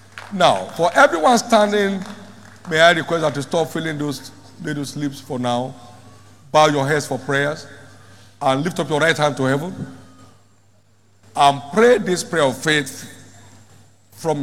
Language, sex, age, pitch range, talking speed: English, male, 50-69, 105-150 Hz, 155 wpm